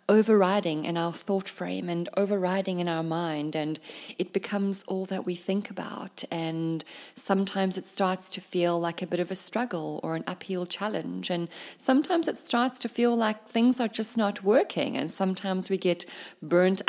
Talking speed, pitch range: 180 wpm, 180-210 Hz